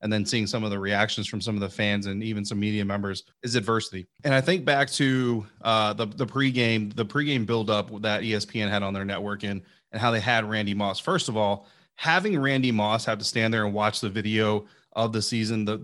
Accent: American